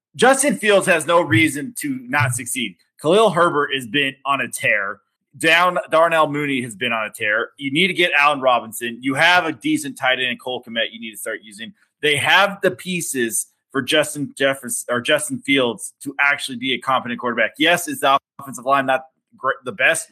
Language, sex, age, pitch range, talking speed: English, male, 20-39, 110-150 Hz, 205 wpm